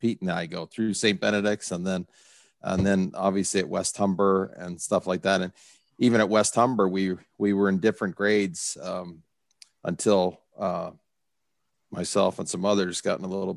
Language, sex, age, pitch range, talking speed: English, male, 40-59, 90-105 Hz, 180 wpm